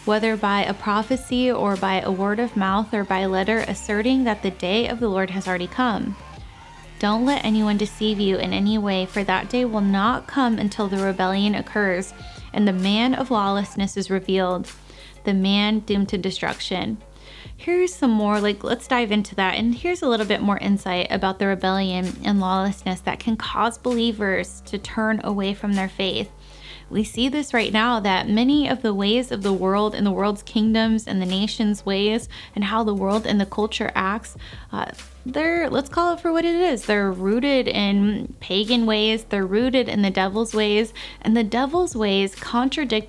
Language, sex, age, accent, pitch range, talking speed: English, female, 20-39, American, 195-240 Hz, 190 wpm